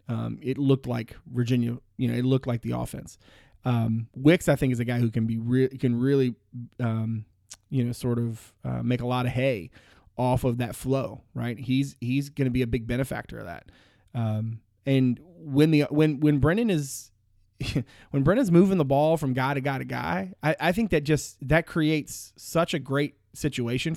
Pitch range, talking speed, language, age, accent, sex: 120-145 Hz, 205 wpm, English, 30-49, American, male